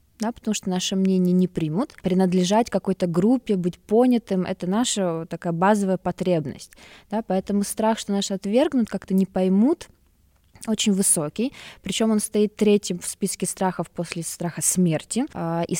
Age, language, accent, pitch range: 20-39, Russian, native, 170-215 Hz